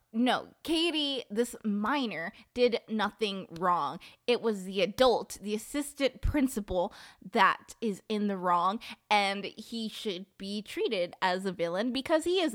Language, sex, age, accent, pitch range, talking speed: English, female, 20-39, American, 185-240 Hz, 145 wpm